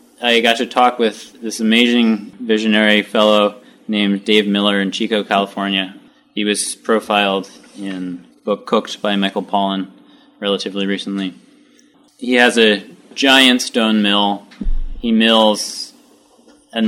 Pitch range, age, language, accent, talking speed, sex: 100-120 Hz, 20-39, English, American, 130 wpm, male